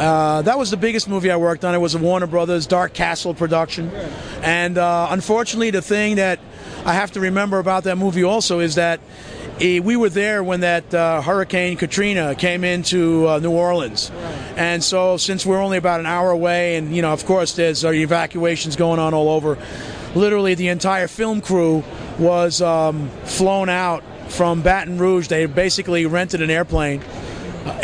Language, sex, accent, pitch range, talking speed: English, male, American, 160-185 Hz, 185 wpm